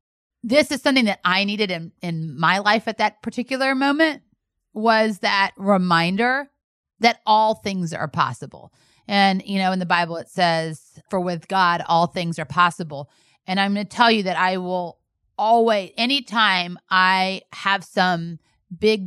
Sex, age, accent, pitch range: female, 30-49, American, 180-215 Hz